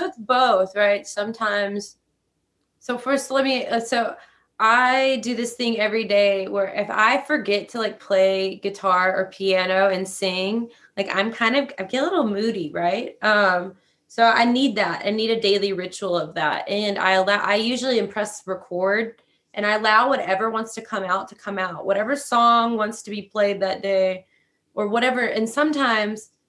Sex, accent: female, American